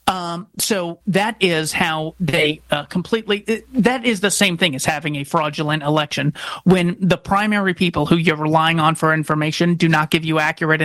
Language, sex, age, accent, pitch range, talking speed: English, male, 30-49, American, 155-190 Hz, 185 wpm